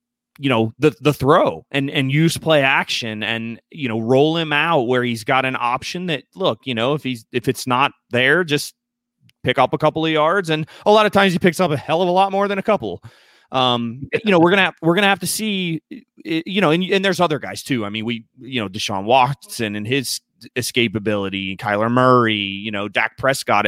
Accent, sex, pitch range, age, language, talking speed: American, male, 110-150 Hz, 30-49, English, 235 wpm